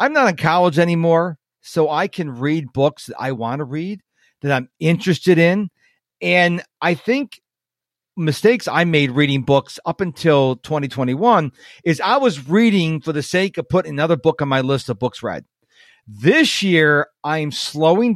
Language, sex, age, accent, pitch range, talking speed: English, male, 40-59, American, 135-185 Hz, 170 wpm